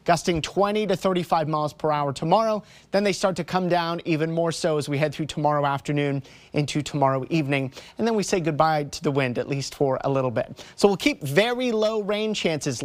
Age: 30-49